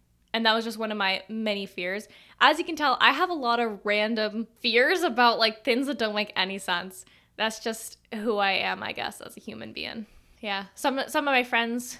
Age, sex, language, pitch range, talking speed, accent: 10-29, female, English, 200-245 Hz, 225 wpm, American